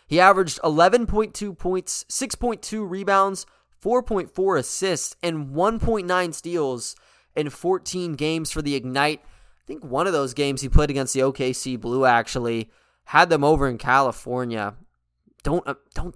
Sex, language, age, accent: male, English, 20-39, American